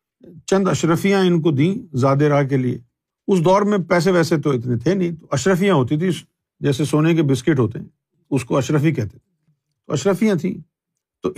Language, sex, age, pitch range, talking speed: Urdu, male, 50-69, 130-175 Hz, 190 wpm